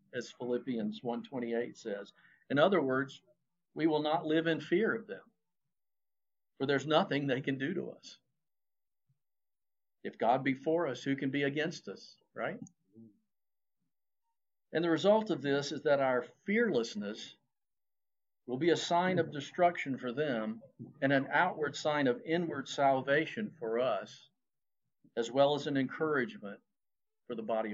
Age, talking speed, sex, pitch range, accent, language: 50-69, 145 wpm, male, 130-175 Hz, American, English